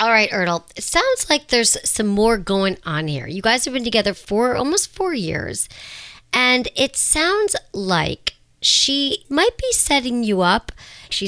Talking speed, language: 170 wpm, English